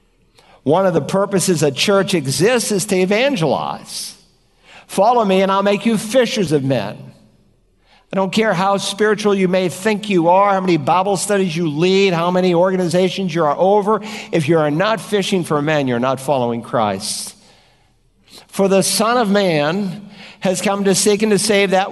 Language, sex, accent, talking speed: English, male, American, 180 wpm